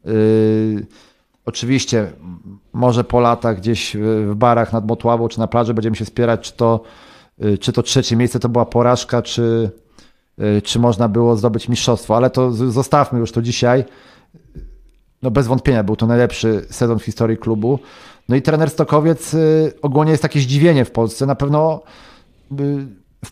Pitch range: 115-130 Hz